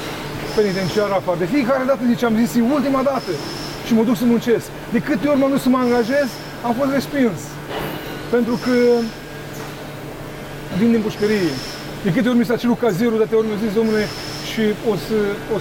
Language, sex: Romanian, male